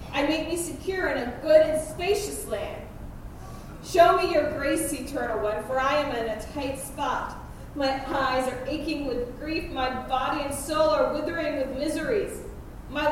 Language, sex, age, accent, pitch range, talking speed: English, female, 30-49, American, 275-345 Hz, 175 wpm